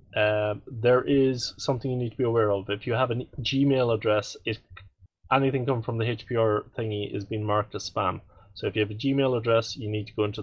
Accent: Norwegian